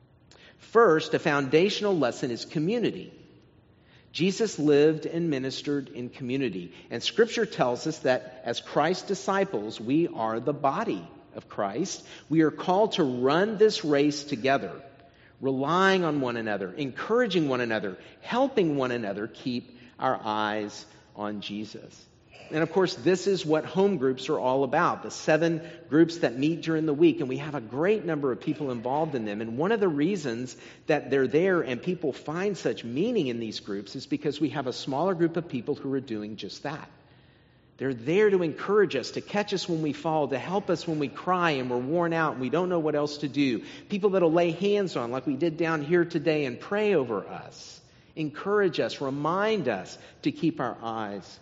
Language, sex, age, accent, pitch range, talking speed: English, male, 50-69, American, 125-175 Hz, 190 wpm